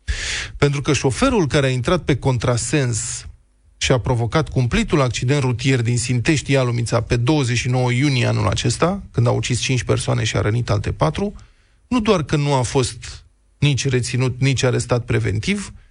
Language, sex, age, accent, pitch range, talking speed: Romanian, male, 20-39, native, 120-155 Hz, 160 wpm